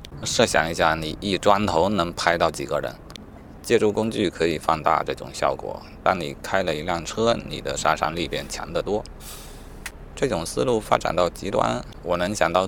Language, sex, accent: Chinese, male, native